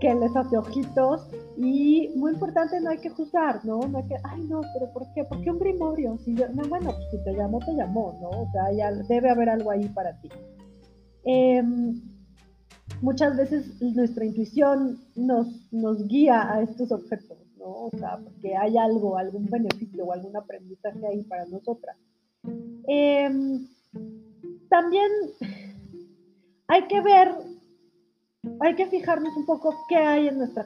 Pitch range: 205-265 Hz